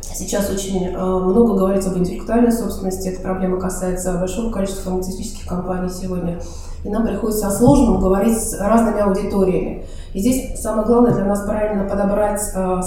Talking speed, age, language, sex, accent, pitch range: 150 wpm, 20-39, Russian, female, native, 185-215 Hz